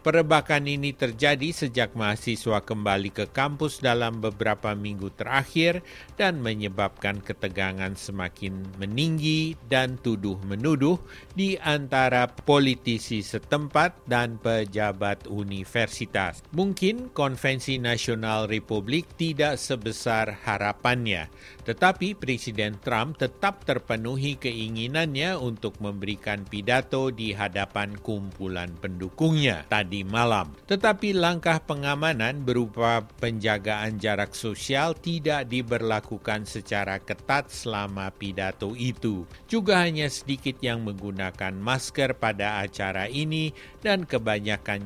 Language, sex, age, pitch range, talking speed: Indonesian, male, 50-69, 100-140 Hz, 100 wpm